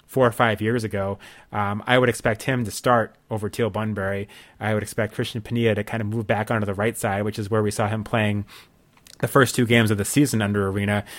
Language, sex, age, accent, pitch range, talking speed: English, male, 30-49, American, 105-120 Hz, 240 wpm